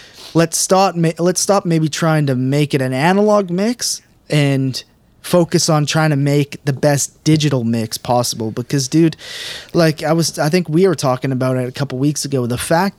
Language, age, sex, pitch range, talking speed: English, 20-39, male, 130-165 Hz, 195 wpm